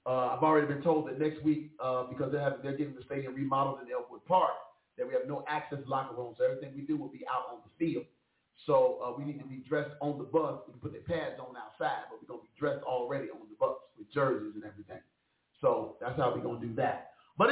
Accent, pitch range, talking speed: American, 130-165 Hz, 255 wpm